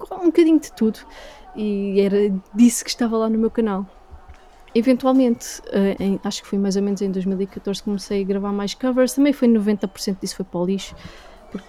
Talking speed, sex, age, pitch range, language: 195 wpm, female, 20-39, 200-250 Hz, Portuguese